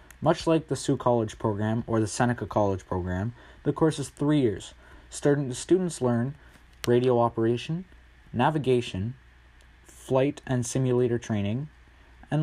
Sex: male